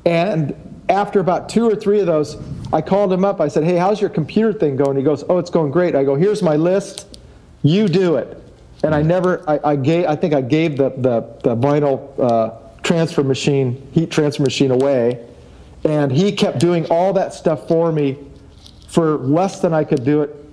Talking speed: 200 wpm